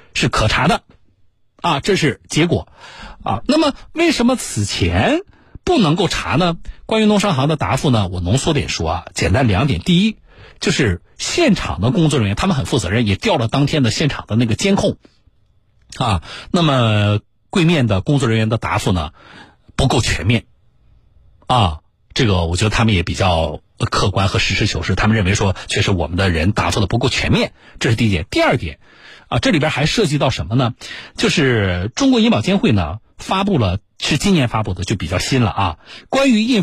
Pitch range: 100-160 Hz